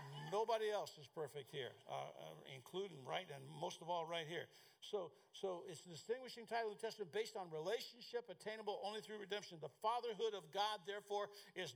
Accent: American